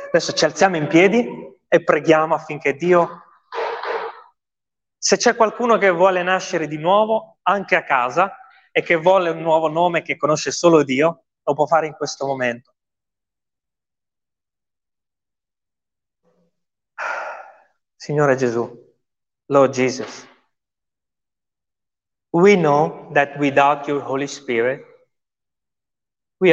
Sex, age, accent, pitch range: male, 30-49, native, 140-180 Hz